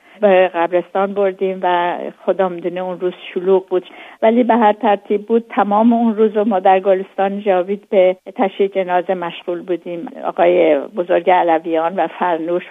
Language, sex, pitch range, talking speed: Persian, female, 170-195 Hz, 145 wpm